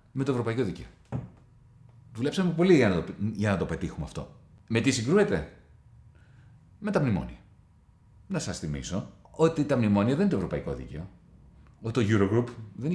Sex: male